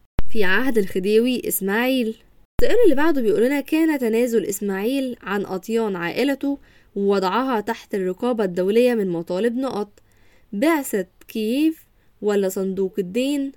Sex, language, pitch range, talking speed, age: female, Arabic, 190-245 Hz, 120 wpm, 10-29